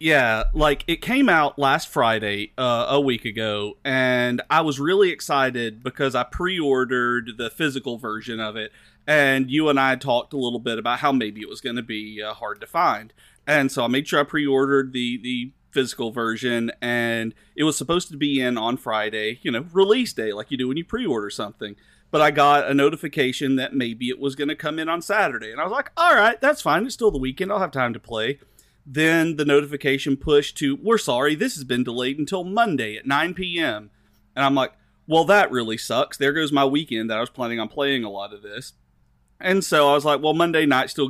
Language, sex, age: English, male, 40-59